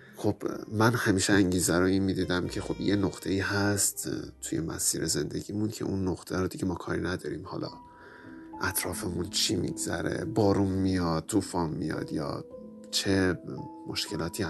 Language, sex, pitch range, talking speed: Persian, male, 90-110 Hz, 145 wpm